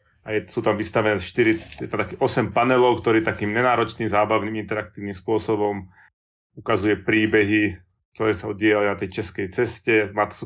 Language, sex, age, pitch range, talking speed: Slovak, male, 30-49, 100-110 Hz, 130 wpm